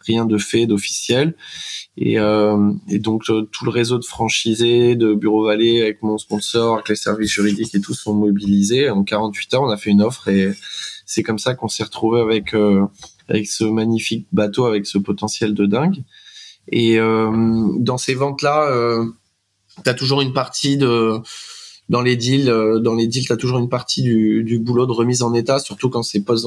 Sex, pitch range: male, 105-120 Hz